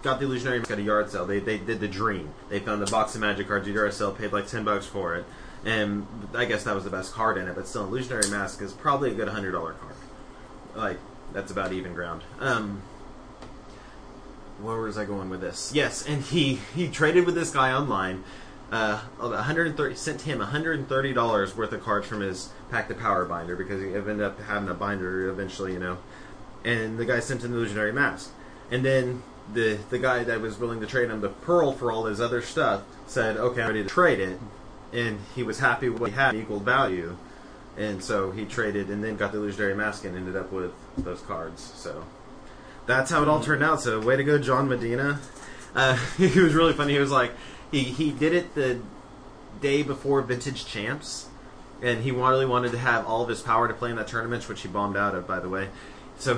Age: 20-39